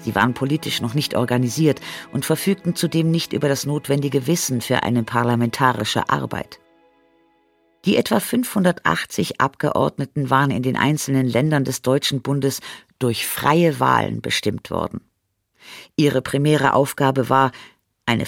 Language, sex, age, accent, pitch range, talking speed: German, female, 50-69, German, 115-155 Hz, 130 wpm